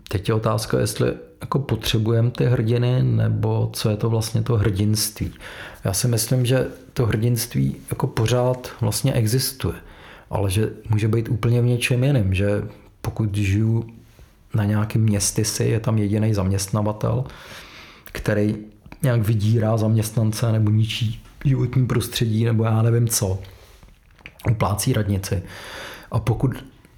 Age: 40-59